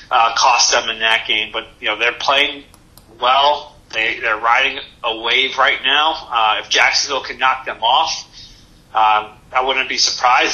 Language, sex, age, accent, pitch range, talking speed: English, male, 30-49, American, 110-135 Hz, 175 wpm